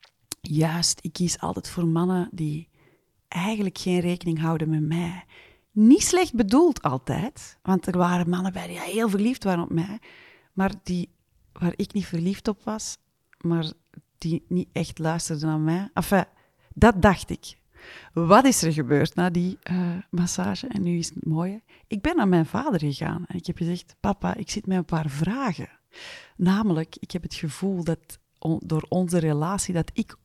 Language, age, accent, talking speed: Dutch, 30-49, Dutch, 175 wpm